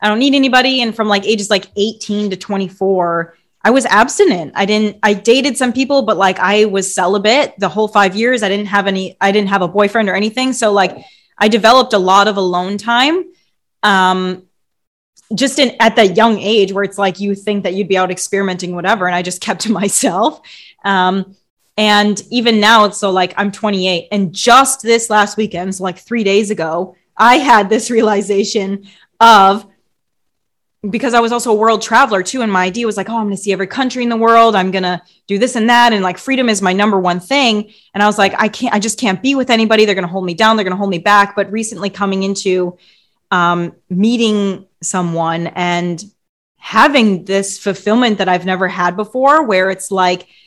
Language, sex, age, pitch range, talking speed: English, female, 20-39, 190-225 Hz, 215 wpm